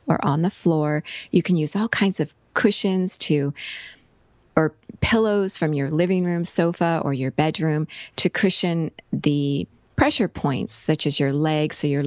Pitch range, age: 145-185 Hz, 40-59